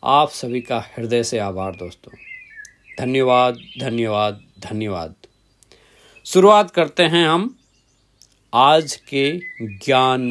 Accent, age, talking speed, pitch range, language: native, 40-59, 100 wpm, 125-175 Hz, Hindi